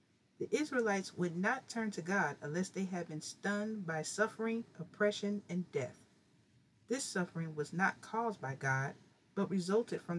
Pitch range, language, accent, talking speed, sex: 155-220 Hz, English, American, 160 wpm, female